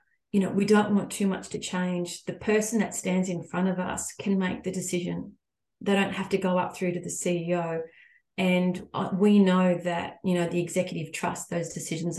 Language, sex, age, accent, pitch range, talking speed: English, female, 30-49, Australian, 170-195 Hz, 205 wpm